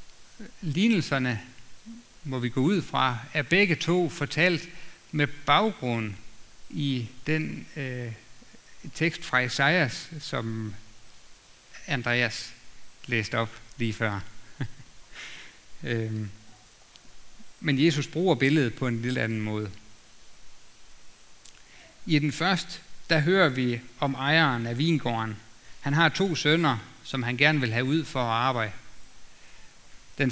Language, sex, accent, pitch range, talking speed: Danish, male, native, 115-145 Hz, 115 wpm